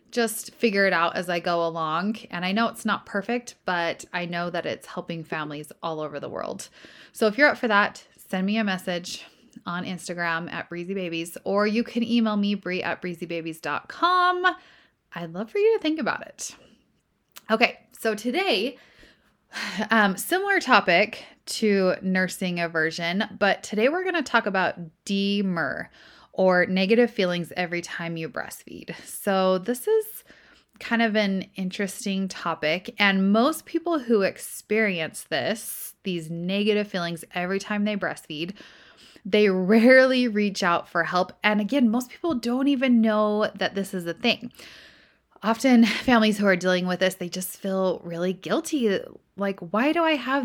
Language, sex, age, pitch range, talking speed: English, female, 20-39, 180-235 Hz, 160 wpm